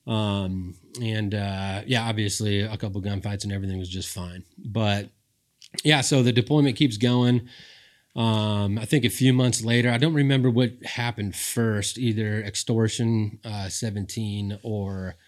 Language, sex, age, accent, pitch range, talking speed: English, male, 30-49, American, 100-115 Hz, 150 wpm